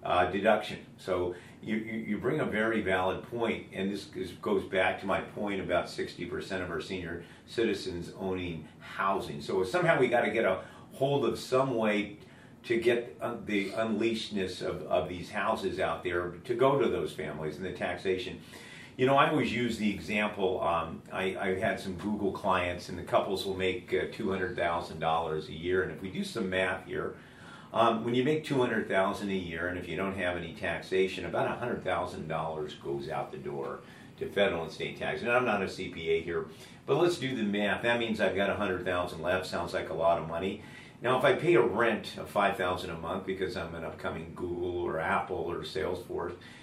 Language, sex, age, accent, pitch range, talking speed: English, male, 50-69, American, 90-110 Hz, 205 wpm